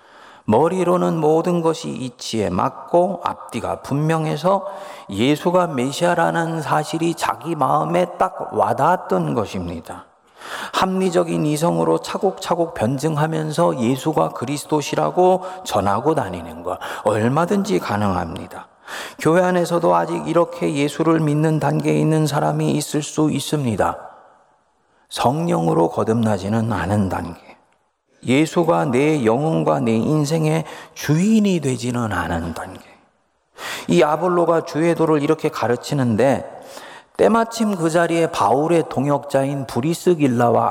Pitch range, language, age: 120-175 Hz, Korean, 40-59